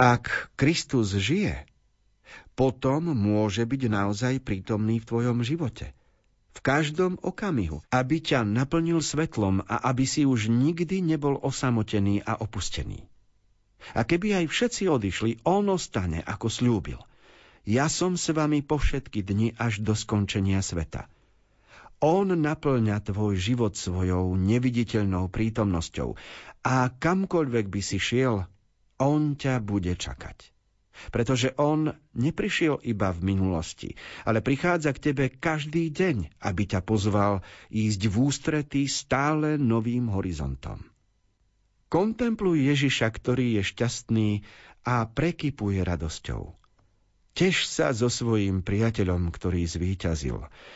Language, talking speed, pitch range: Slovak, 115 wpm, 100-140 Hz